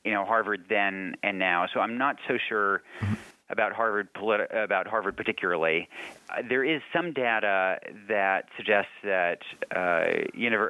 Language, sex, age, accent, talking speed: English, male, 40-59, American, 140 wpm